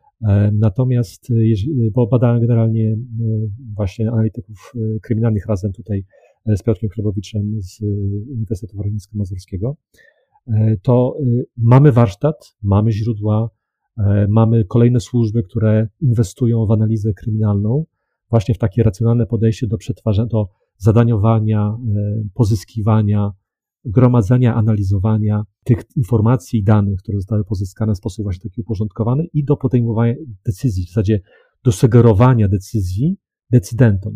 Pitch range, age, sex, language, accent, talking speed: 105-120 Hz, 40-59, male, Polish, native, 110 wpm